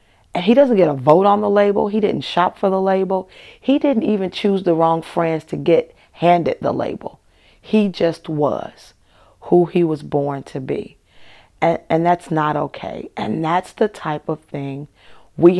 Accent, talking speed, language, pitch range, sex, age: American, 185 wpm, English, 150-205 Hz, female, 40-59